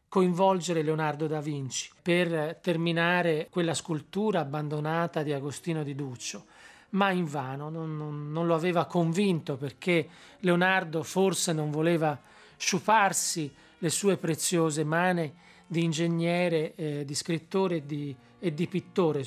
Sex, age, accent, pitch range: male, 40-59, native, 155-190 Hz